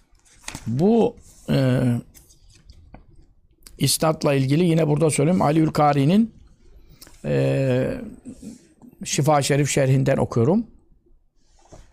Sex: male